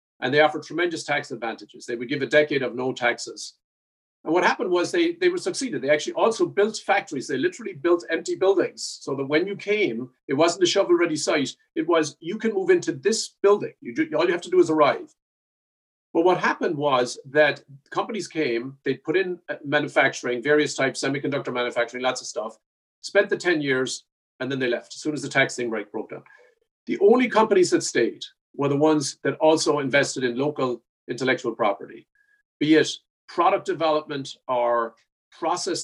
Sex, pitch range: male, 135-200 Hz